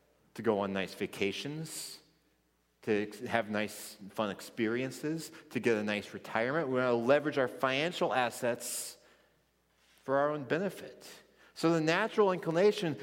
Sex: male